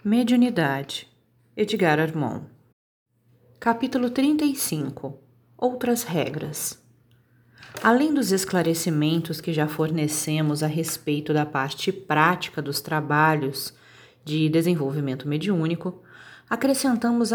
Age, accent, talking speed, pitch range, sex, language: 30-49, Brazilian, 85 wpm, 150-215 Hz, female, Portuguese